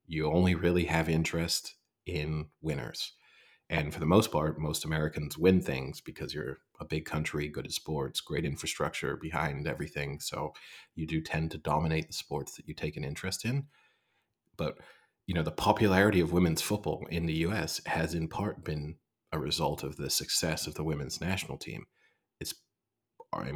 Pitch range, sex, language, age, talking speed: 75-85 Hz, male, English, 30-49, 175 wpm